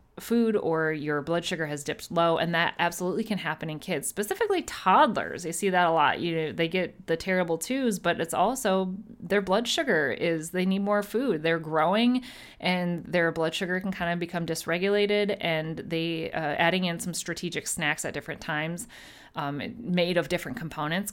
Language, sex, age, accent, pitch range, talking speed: English, female, 30-49, American, 160-195 Hz, 190 wpm